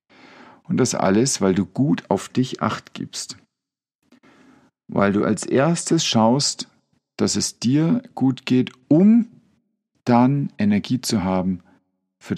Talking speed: 125 wpm